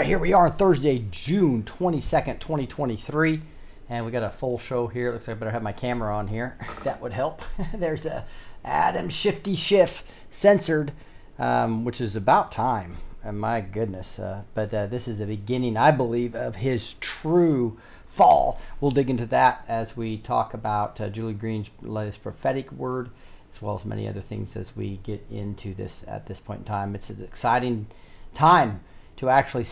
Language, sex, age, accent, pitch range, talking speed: English, male, 40-59, American, 105-130 Hz, 190 wpm